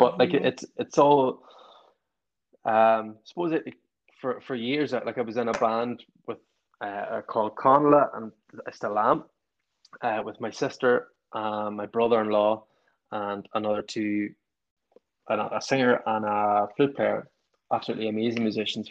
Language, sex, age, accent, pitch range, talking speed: English, male, 20-39, Irish, 105-115 Hz, 145 wpm